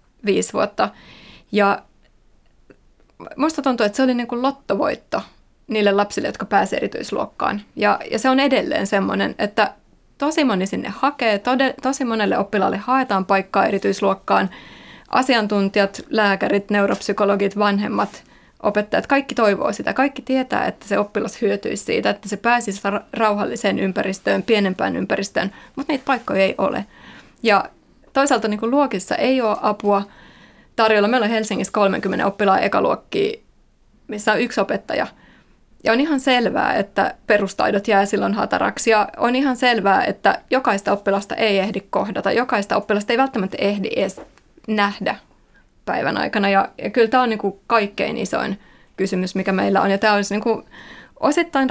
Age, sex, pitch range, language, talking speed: 20-39, female, 200-255 Hz, Finnish, 145 wpm